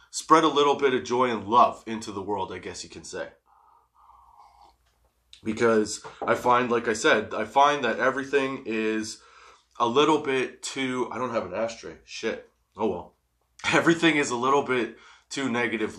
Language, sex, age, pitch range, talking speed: English, male, 20-39, 100-135 Hz, 175 wpm